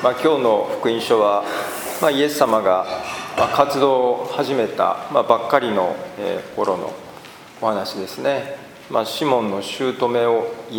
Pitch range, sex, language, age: 115-145 Hz, male, Japanese, 40-59